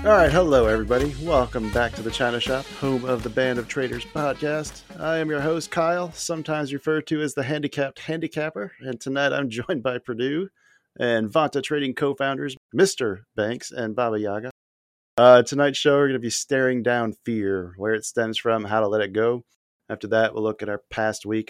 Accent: American